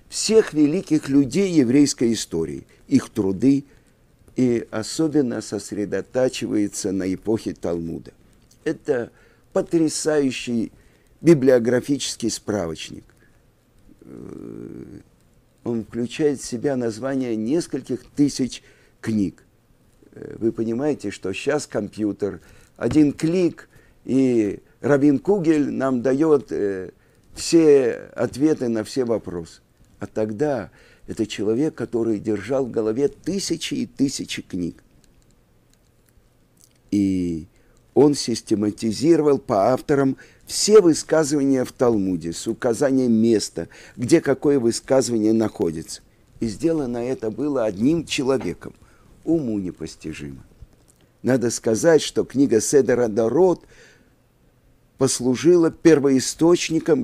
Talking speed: 90 wpm